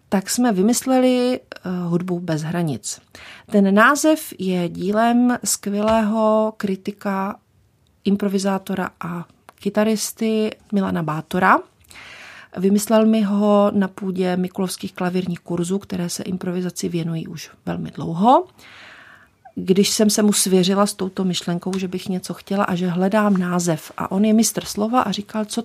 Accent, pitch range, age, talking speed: native, 185-215 Hz, 40-59, 130 wpm